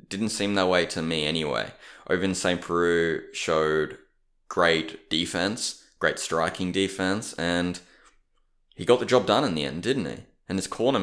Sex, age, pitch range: male, 20-39, 85-100 Hz